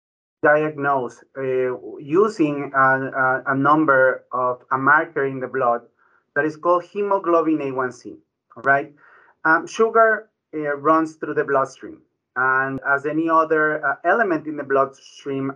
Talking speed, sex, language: 130 wpm, male, English